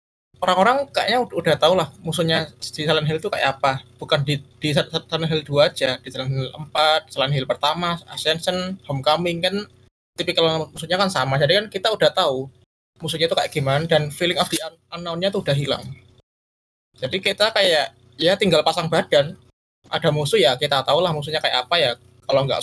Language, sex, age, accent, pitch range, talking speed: Indonesian, male, 20-39, native, 140-170 Hz, 190 wpm